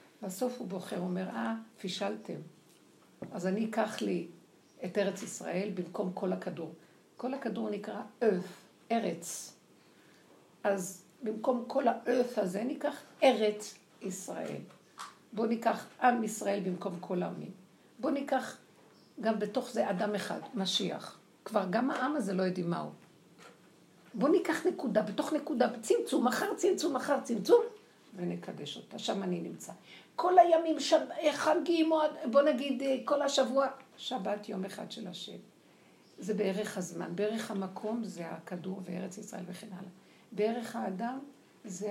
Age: 60-79